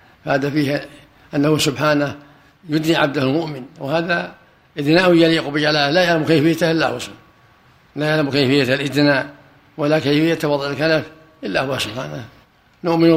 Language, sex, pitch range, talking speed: Arabic, male, 145-160 Hz, 130 wpm